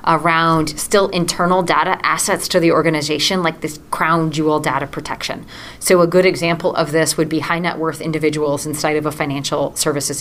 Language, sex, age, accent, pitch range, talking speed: English, female, 30-49, American, 150-175 Hz, 180 wpm